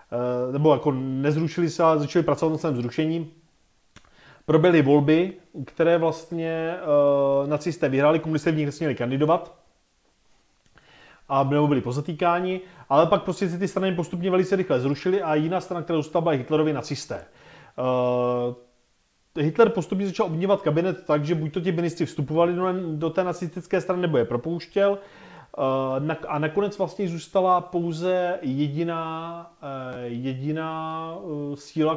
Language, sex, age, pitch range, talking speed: Czech, male, 30-49, 145-175 Hz, 125 wpm